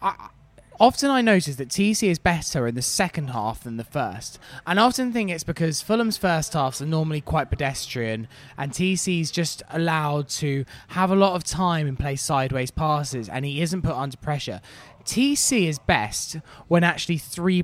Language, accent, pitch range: English, British, 130-180 Hz